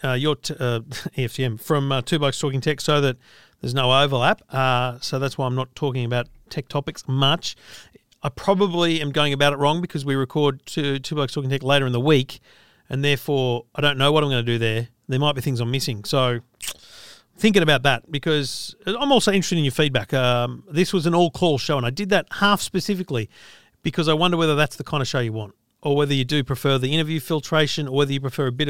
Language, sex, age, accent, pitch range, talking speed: English, male, 40-59, Australian, 130-165 Hz, 230 wpm